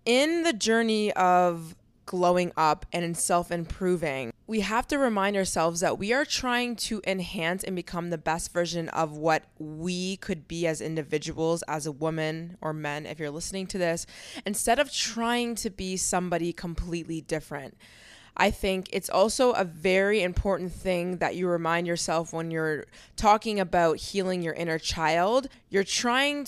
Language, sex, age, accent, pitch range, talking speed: English, female, 20-39, American, 165-210 Hz, 165 wpm